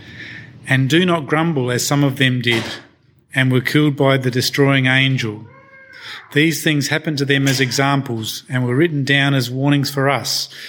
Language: English